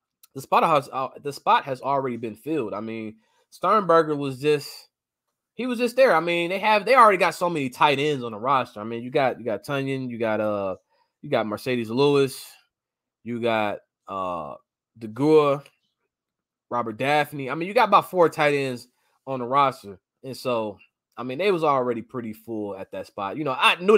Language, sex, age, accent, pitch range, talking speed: English, male, 20-39, American, 115-185 Hz, 195 wpm